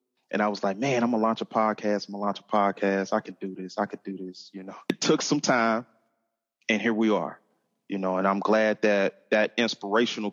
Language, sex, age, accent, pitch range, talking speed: English, male, 30-49, American, 95-110 Hz, 250 wpm